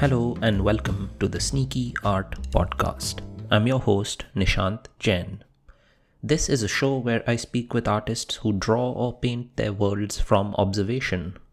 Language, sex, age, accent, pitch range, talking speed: English, male, 30-49, Indian, 100-120 Hz, 155 wpm